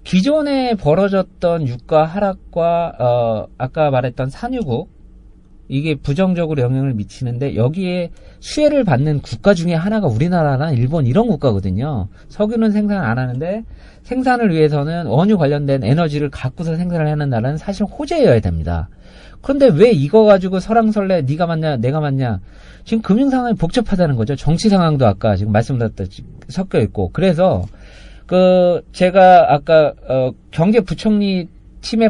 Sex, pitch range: male, 130-205 Hz